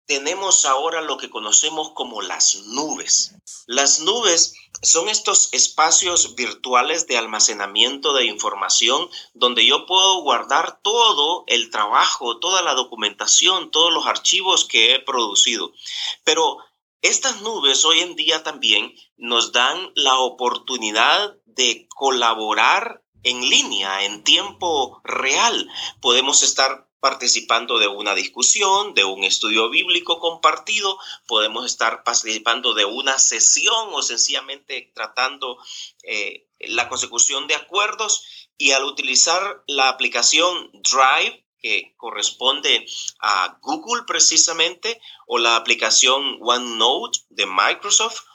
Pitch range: 125-205 Hz